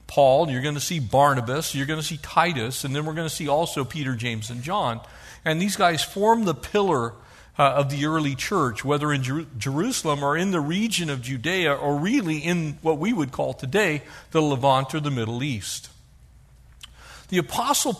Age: 50-69